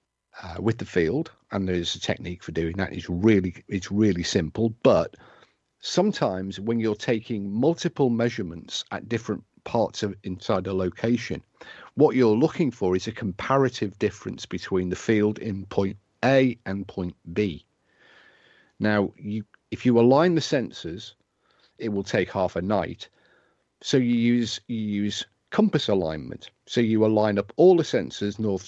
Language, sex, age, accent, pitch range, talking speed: English, male, 50-69, British, 90-115 Hz, 155 wpm